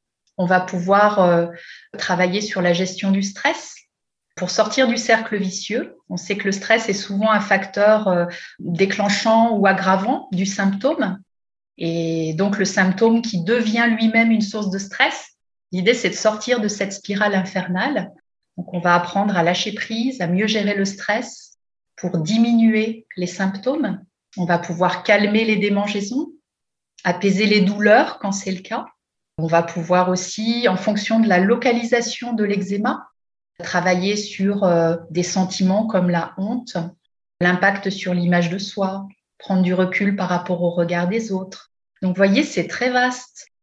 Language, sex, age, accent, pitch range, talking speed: French, female, 30-49, French, 185-220 Hz, 160 wpm